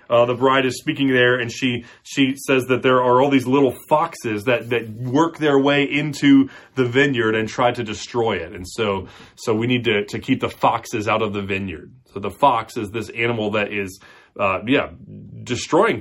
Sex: male